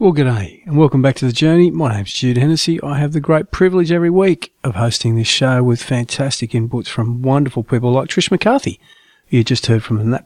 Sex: male